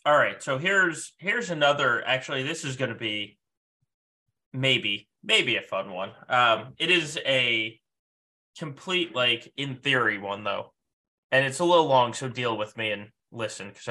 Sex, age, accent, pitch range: male, 20-39, American, 115-150 Hz